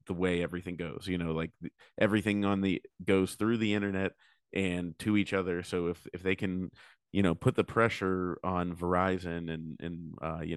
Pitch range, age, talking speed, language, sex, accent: 90-105 Hz, 30-49, 195 wpm, English, male, American